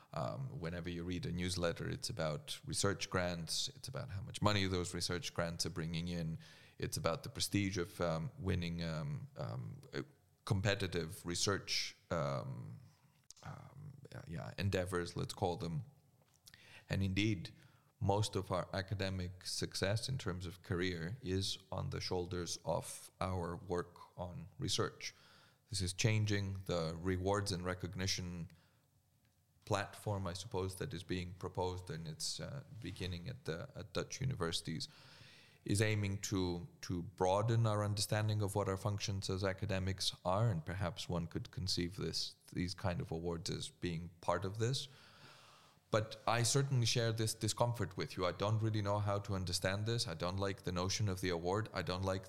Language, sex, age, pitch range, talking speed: English, male, 30-49, 90-115 Hz, 160 wpm